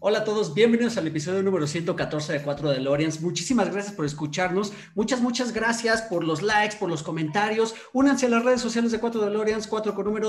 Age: 40-59